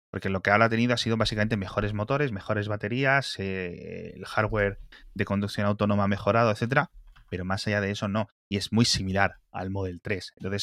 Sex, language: male, Spanish